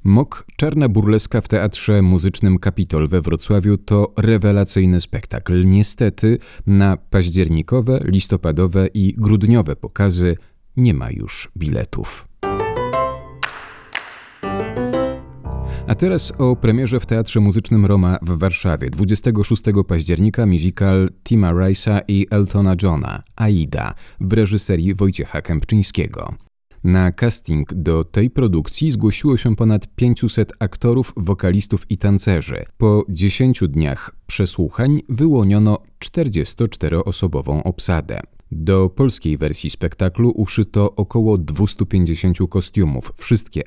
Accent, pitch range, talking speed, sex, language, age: native, 90-110 Hz, 105 wpm, male, Polish, 30-49